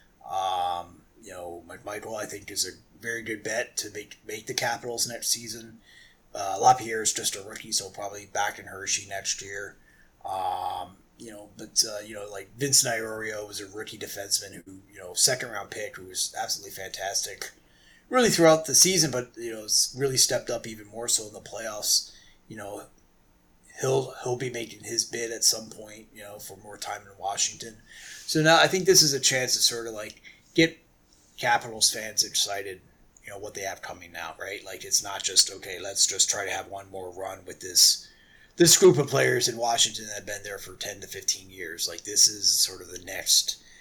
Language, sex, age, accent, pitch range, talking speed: English, male, 30-49, American, 100-135 Hz, 205 wpm